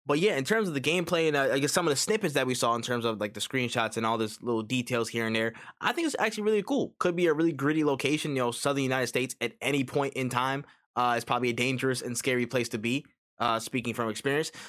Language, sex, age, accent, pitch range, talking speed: English, male, 20-39, American, 125-165 Hz, 280 wpm